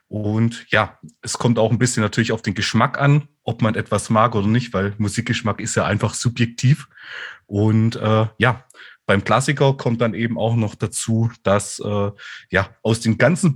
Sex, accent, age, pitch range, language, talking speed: male, German, 30-49, 105-125 Hz, German, 180 wpm